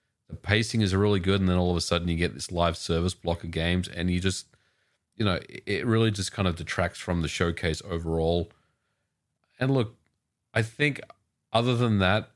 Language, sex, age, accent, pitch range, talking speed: English, male, 40-59, Australian, 90-115 Hz, 200 wpm